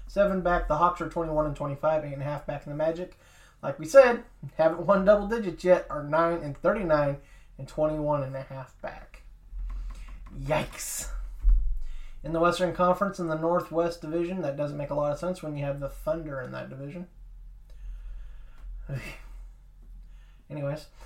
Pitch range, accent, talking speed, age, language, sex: 140-175 Hz, American, 170 wpm, 20-39, English, male